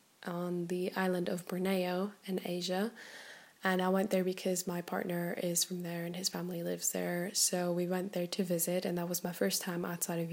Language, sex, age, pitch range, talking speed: English, female, 10-29, 175-190 Hz, 210 wpm